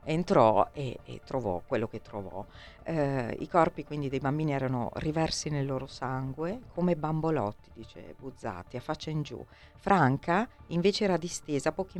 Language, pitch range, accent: Italian, 130-165 Hz, native